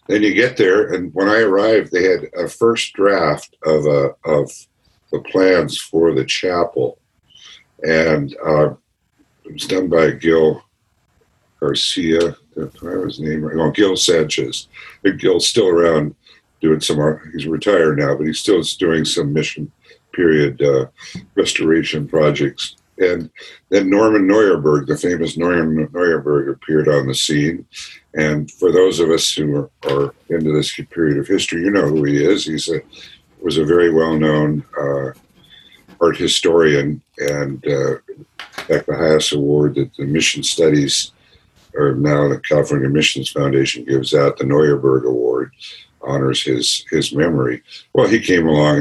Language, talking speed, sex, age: English, 150 wpm, male, 60-79